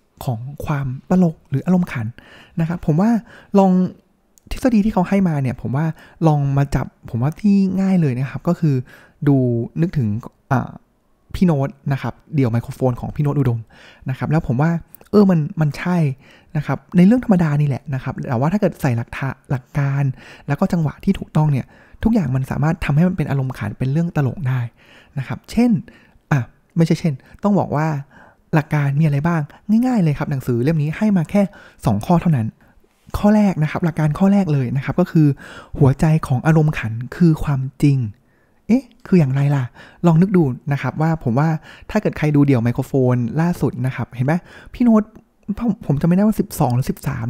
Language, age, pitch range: Thai, 20-39, 135-185 Hz